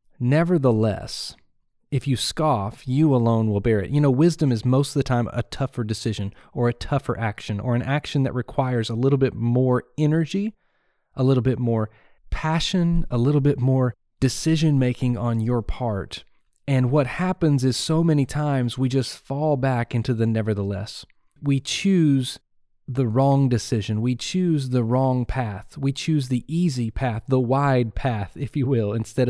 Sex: male